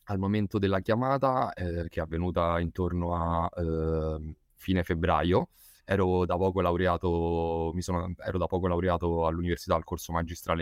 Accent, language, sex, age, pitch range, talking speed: native, Italian, male, 20-39, 80-95 Hz, 145 wpm